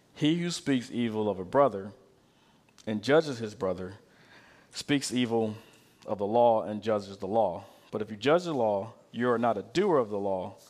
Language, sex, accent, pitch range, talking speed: English, male, American, 110-140 Hz, 190 wpm